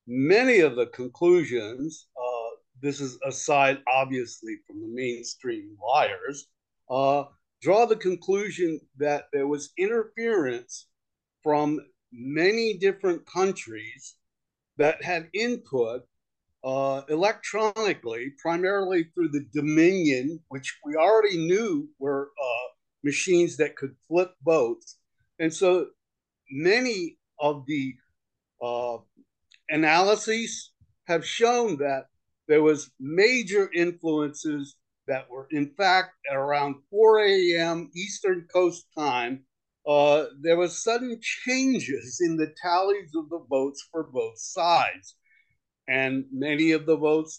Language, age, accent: English, 50-69, American